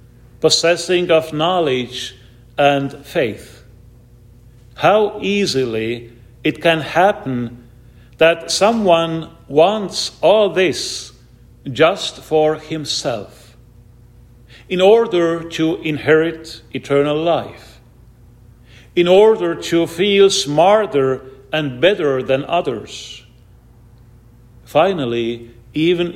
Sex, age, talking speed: male, 50-69, 80 wpm